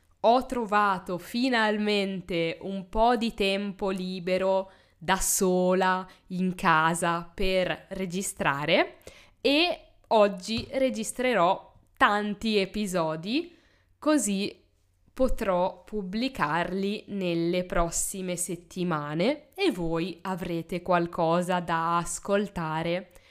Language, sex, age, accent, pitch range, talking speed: Italian, female, 20-39, native, 170-215 Hz, 80 wpm